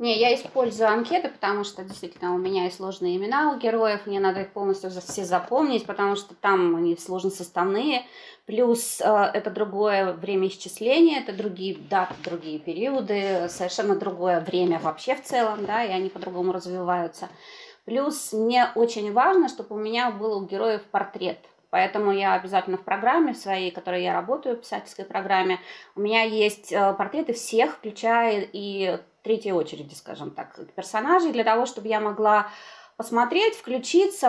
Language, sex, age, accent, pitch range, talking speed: Russian, female, 20-39, native, 195-250 Hz, 155 wpm